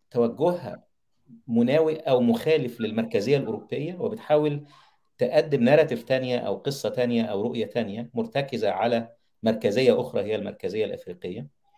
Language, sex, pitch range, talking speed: Arabic, male, 115-175 Hz, 115 wpm